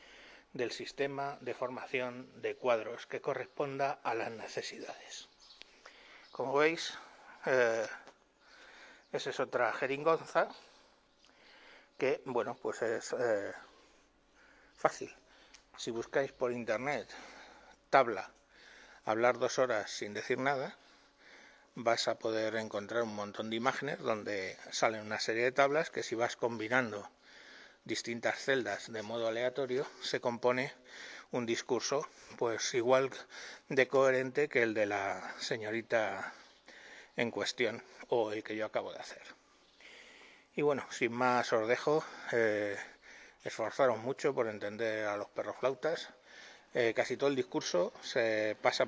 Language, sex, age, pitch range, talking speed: Spanish, male, 60-79, 110-140 Hz, 125 wpm